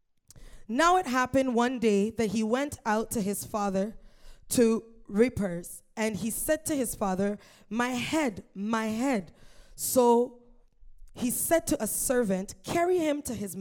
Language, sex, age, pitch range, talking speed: English, female, 20-39, 190-245 Hz, 150 wpm